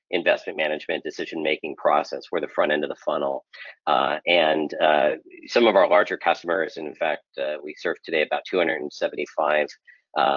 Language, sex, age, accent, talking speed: English, male, 40-59, American, 170 wpm